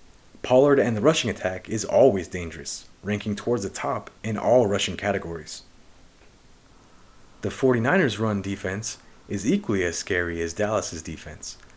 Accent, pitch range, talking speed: American, 90-125 Hz, 140 wpm